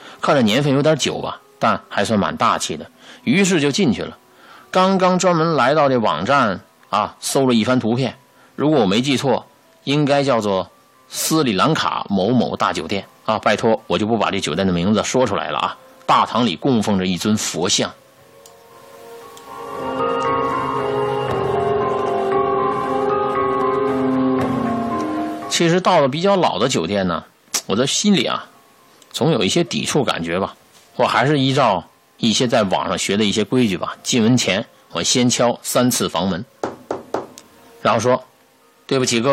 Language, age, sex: Chinese, 50-69, male